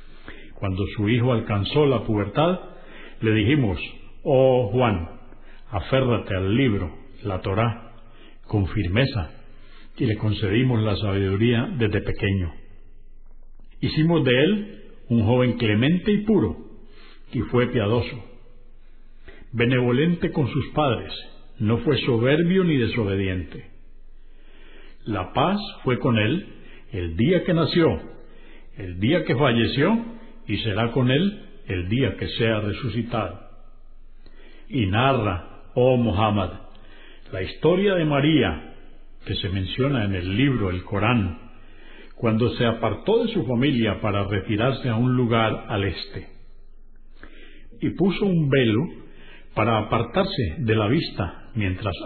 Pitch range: 100-135 Hz